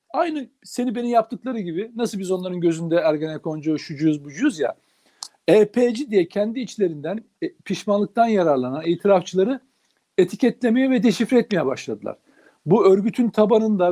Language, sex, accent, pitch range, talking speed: Turkish, male, native, 185-240 Hz, 125 wpm